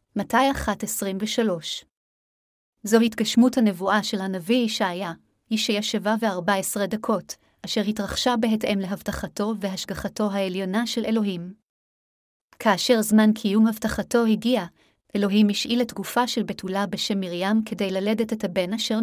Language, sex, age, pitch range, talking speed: Hebrew, female, 30-49, 200-230 Hz, 130 wpm